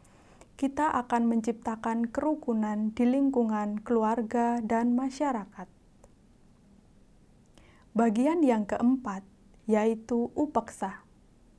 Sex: female